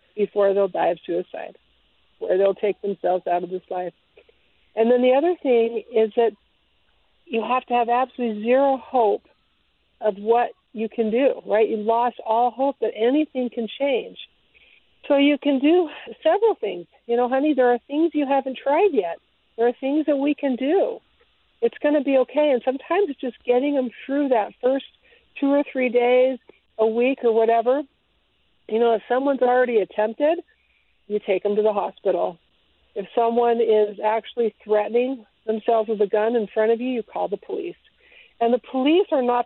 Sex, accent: female, American